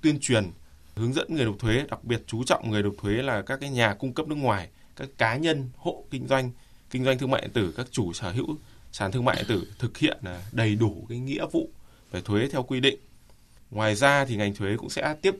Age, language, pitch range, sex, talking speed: 20-39, Vietnamese, 105-135 Hz, male, 245 wpm